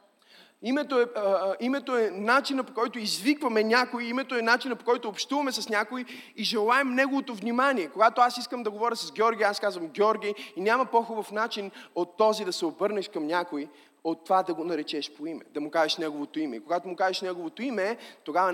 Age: 20-39